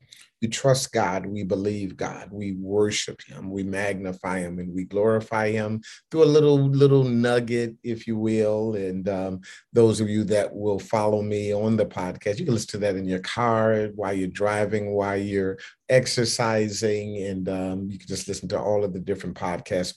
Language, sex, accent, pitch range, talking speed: English, male, American, 95-120 Hz, 185 wpm